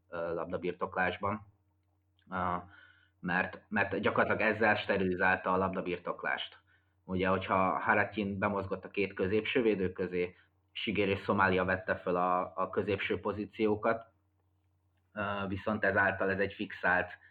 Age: 20-39